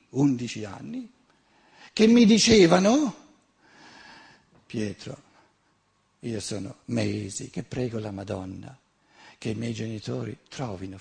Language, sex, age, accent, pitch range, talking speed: Italian, male, 60-79, native, 105-140 Hz, 100 wpm